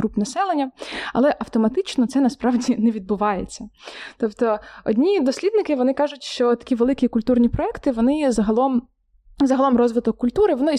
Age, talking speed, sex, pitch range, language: 20-39, 140 wpm, female, 220-255 Hz, Ukrainian